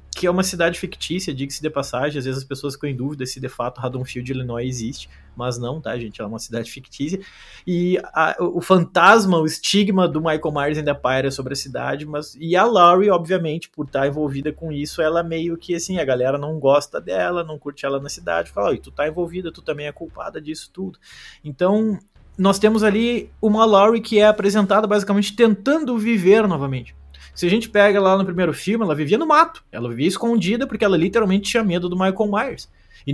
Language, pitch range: Portuguese, 145-205 Hz